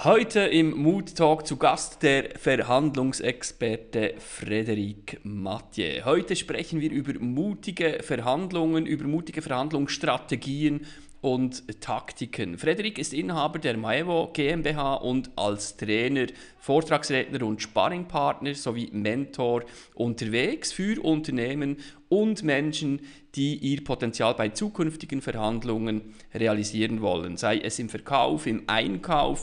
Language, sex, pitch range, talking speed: German, male, 120-155 Hz, 110 wpm